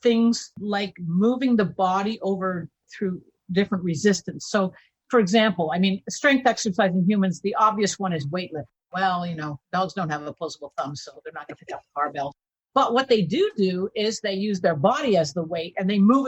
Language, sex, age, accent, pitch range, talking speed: English, female, 50-69, American, 180-235 Hz, 205 wpm